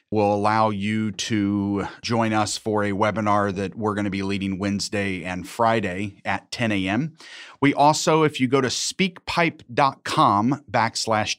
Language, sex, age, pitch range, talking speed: English, male, 30-49, 105-130 Hz, 155 wpm